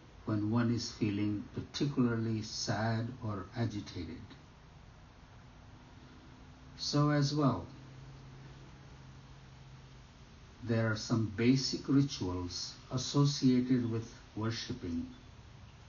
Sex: male